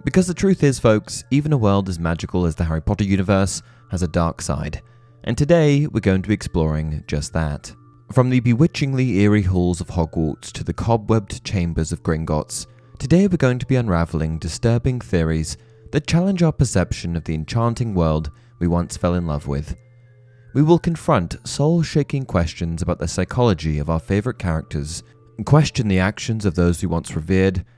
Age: 20-39